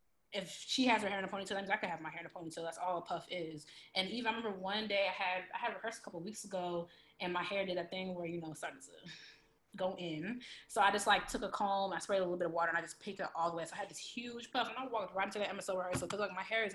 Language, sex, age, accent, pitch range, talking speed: English, female, 20-39, American, 170-200 Hz, 340 wpm